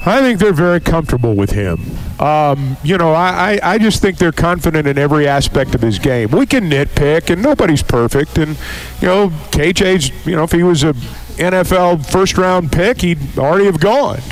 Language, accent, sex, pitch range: English, American, male, 130-180 Hz